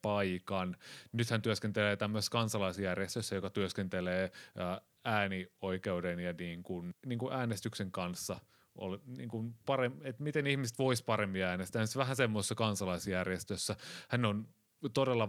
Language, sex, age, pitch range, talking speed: Finnish, male, 30-49, 95-115 Hz, 120 wpm